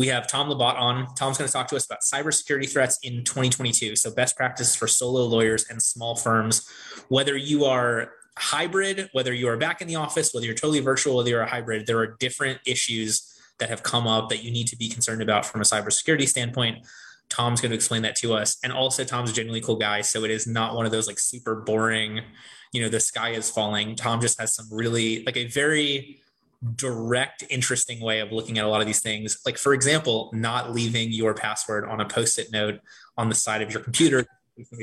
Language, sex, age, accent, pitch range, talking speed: English, male, 20-39, American, 110-130 Hz, 225 wpm